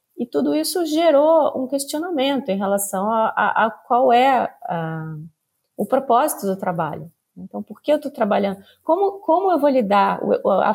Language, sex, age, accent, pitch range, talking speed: Portuguese, female, 30-49, Brazilian, 200-280 Hz, 165 wpm